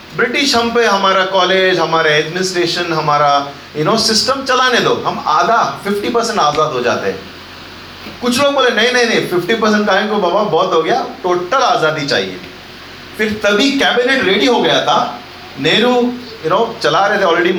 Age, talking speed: 40-59, 175 wpm